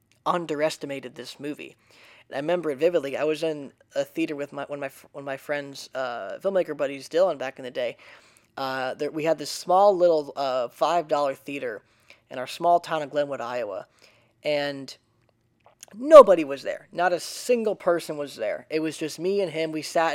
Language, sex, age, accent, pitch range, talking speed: English, male, 10-29, American, 140-175 Hz, 195 wpm